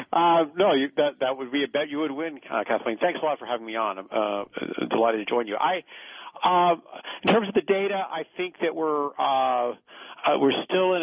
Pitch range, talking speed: 125-155 Hz, 230 wpm